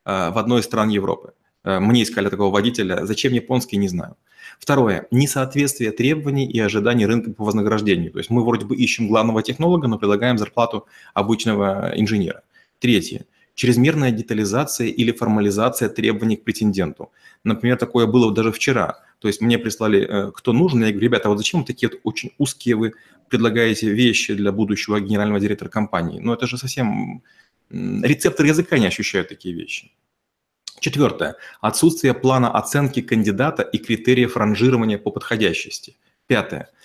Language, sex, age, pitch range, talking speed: Russian, male, 30-49, 105-130 Hz, 150 wpm